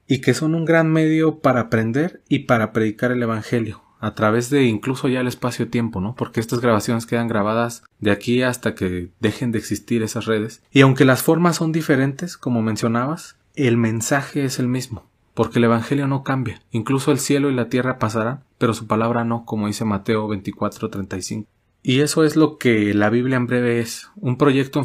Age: 30-49